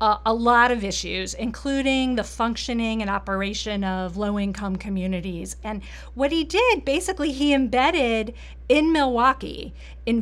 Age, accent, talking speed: 40-59, American, 135 wpm